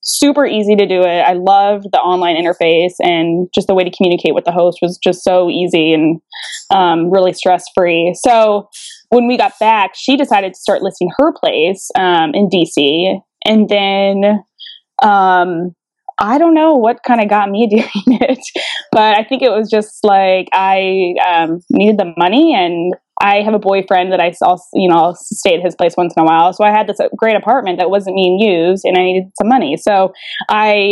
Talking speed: 200 wpm